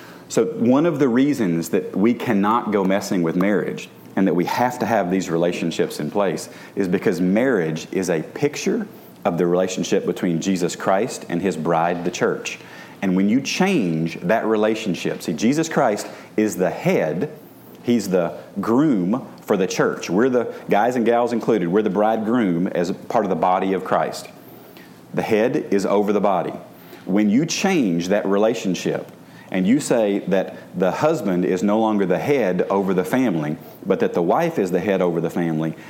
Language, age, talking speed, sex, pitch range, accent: English, 40-59, 180 wpm, male, 90-110 Hz, American